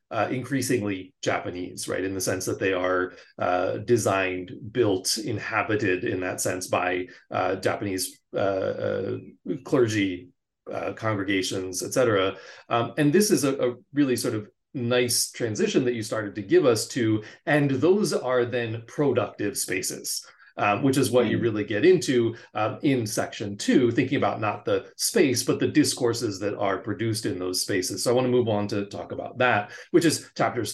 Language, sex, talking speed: English, male, 175 wpm